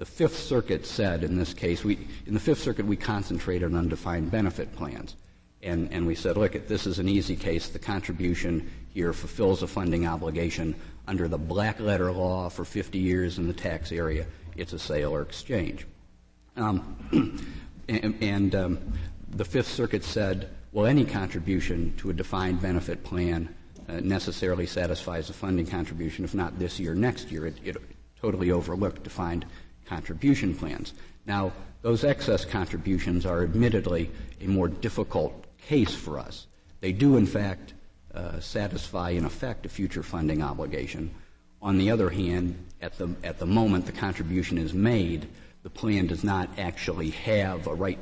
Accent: American